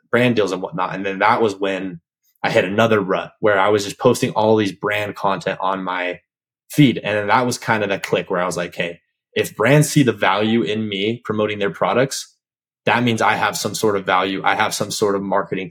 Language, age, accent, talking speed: English, 20-39, American, 235 wpm